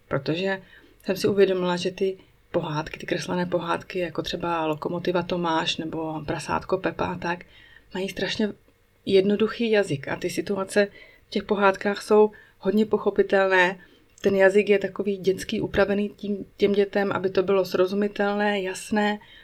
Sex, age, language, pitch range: female, 30-49, Czech, 170-195 Hz